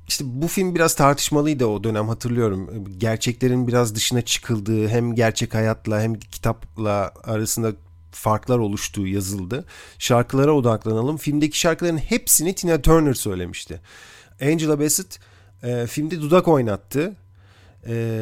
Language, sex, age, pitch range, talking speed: Turkish, male, 40-59, 110-145 Hz, 120 wpm